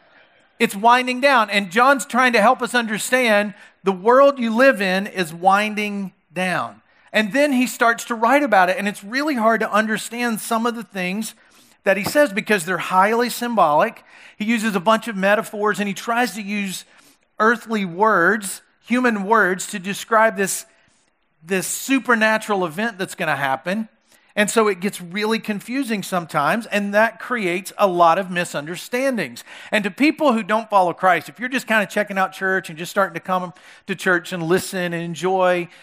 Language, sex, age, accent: English, male, 40-59, American